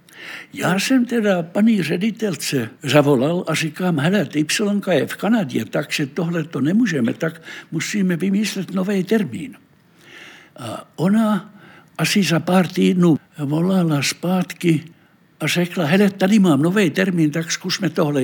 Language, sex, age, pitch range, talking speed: Czech, male, 60-79, 155-195 Hz, 130 wpm